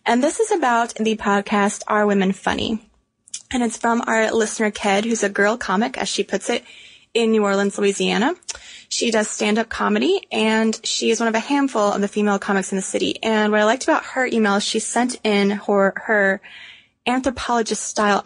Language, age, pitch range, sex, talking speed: English, 20-39, 205-240 Hz, female, 195 wpm